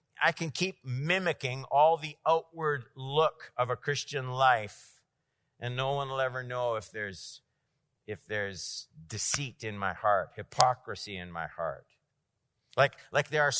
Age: 50-69